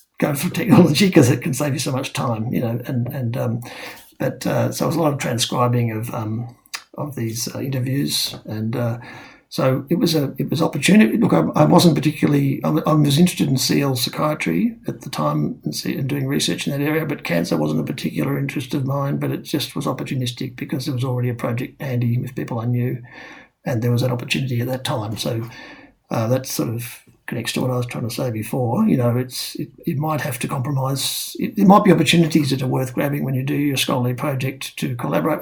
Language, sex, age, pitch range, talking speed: English, male, 60-79, 125-150 Hz, 225 wpm